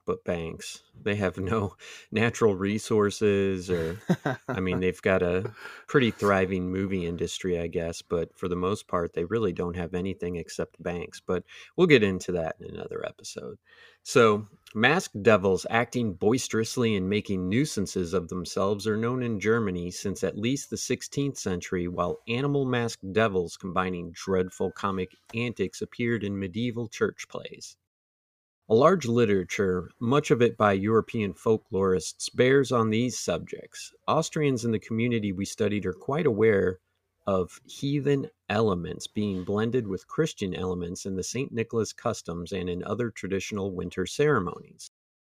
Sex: male